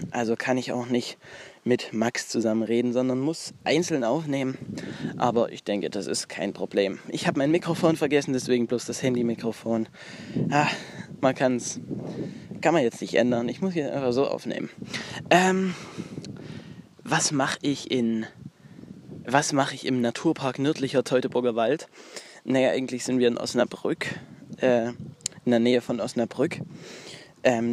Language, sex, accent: German, male, German